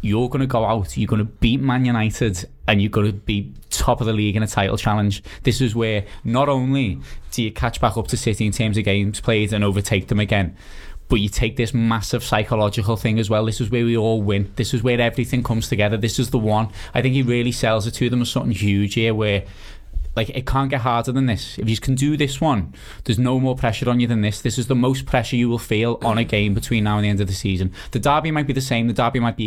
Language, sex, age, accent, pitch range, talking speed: English, male, 20-39, British, 105-125 Hz, 275 wpm